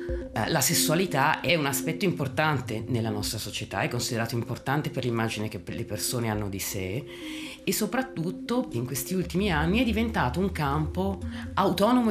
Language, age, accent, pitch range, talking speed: Italian, 30-49, native, 110-175 Hz, 155 wpm